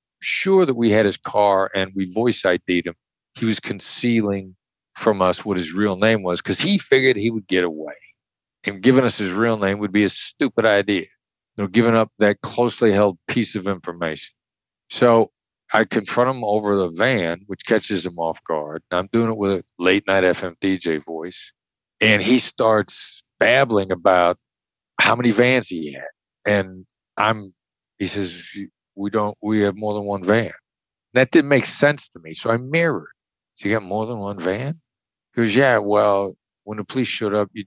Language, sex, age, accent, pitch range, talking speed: English, male, 50-69, American, 95-120 Hz, 190 wpm